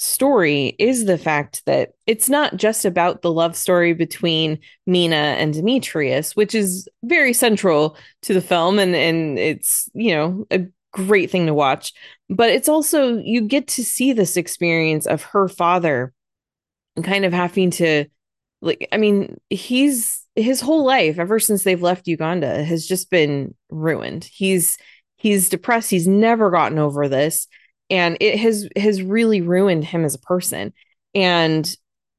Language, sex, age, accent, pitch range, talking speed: English, female, 20-39, American, 155-200 Hz, 155 wpm